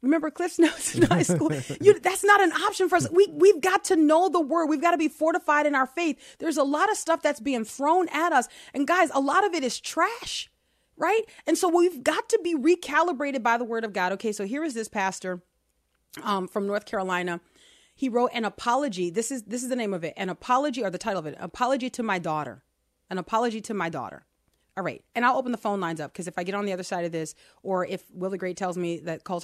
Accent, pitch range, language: American, 170-275 Hz, English